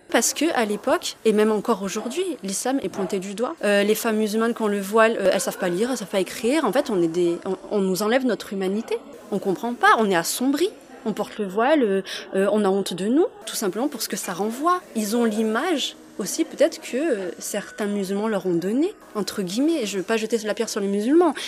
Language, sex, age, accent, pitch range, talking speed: French, female, 20-39, French, 200-270 Hz, 250 wpm